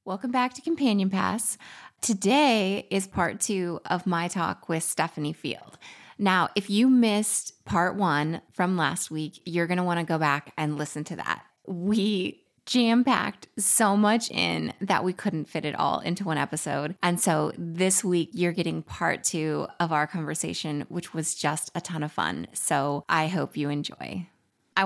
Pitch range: 160-205 Hz